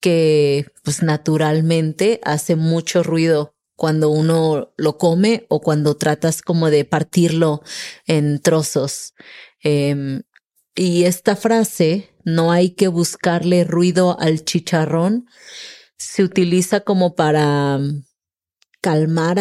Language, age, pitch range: English, 30-49, 155-180 Hz